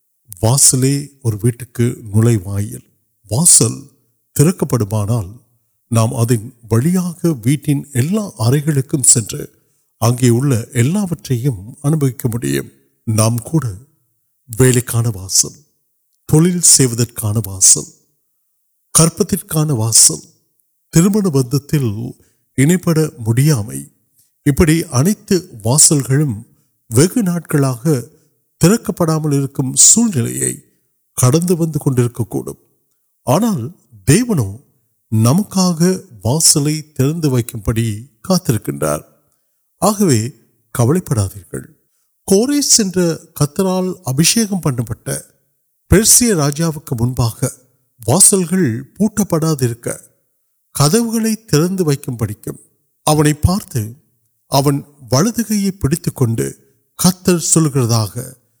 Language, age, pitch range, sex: Urdu, 50-69, 115-165 Hz, male